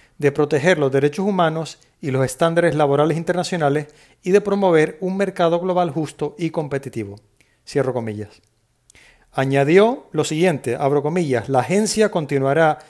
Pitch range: 140-180 Hz